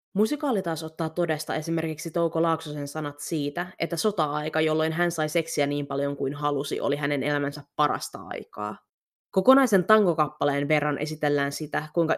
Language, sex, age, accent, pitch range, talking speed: Finnish, female, 20-39, native, 145-170 Hz, 150 wpm